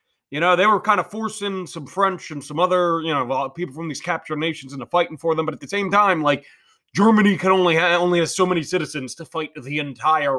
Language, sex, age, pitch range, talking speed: English, male, 30-49, 140-195 Hz, 235 wpm